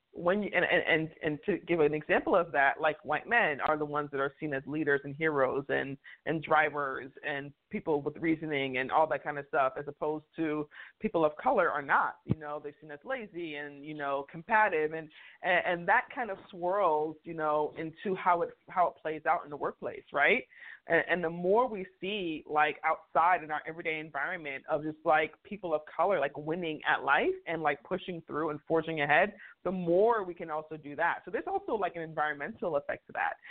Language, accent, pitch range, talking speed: English, American, 150-185 Hz, 215 wpm